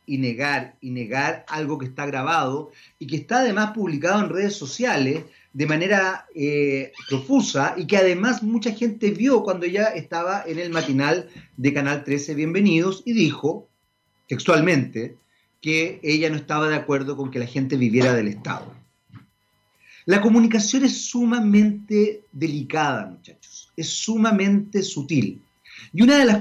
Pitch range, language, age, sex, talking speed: 145-215 Hz, Spanish, 40-59, male, 150 wpm